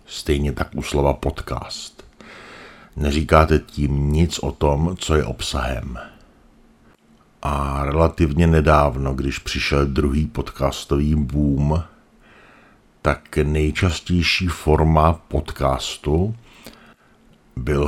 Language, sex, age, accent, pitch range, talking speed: Czech, male, 60-79, native, 75-85 Hz, 85 wpm